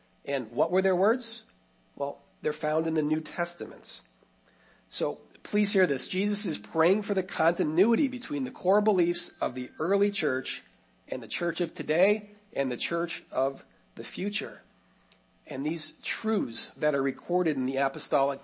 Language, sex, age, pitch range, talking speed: English, male, 40-59, 130-180 Hz, 165 wpm